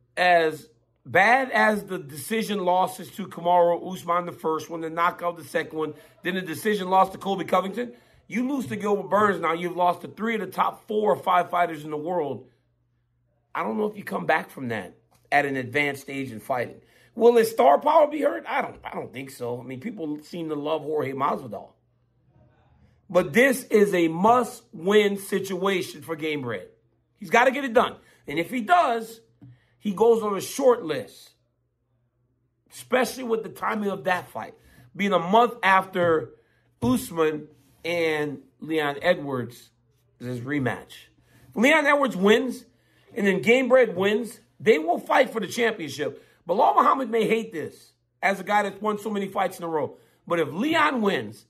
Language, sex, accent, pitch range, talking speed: English, male, American, 150-225 Hz, 180 wpm